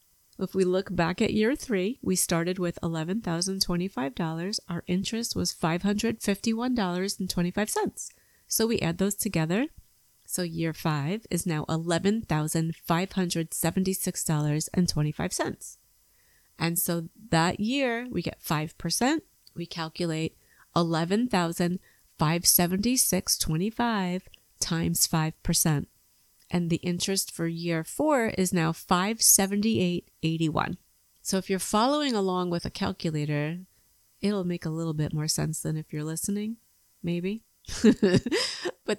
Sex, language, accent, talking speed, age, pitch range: female, English, American, 105 wpm, 30-49, 165-205 Hz